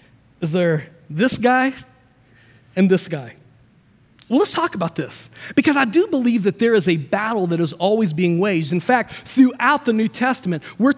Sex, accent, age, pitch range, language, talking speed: male, American, 40-59, 185-260 Hz, English, 180 wpm